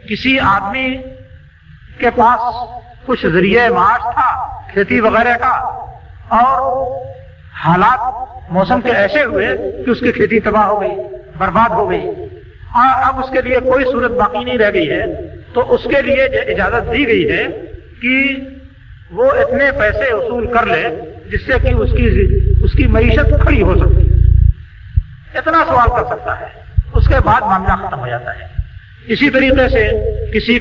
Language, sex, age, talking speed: Urdu, male, 50-69, 160 wpm